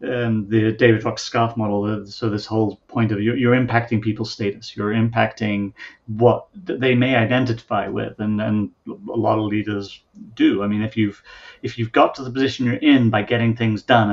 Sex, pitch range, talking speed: male, 105-120 Hz, 195 wpm